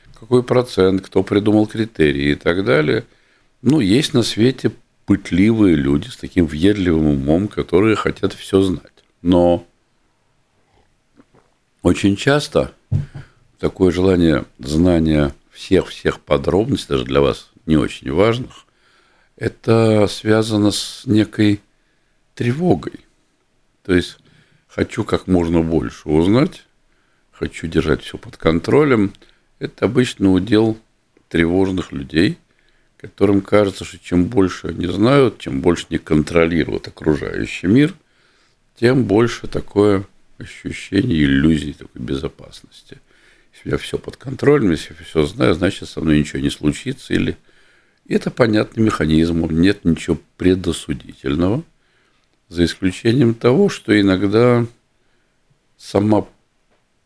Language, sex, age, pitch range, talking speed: Russian, male, 60-79, 85-115 Hz, 115 wpm